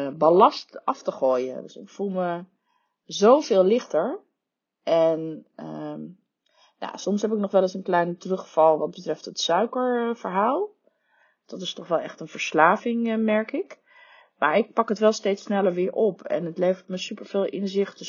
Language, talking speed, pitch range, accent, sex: Dutch, 175 wpm, 170-225 Hz, Dutch, female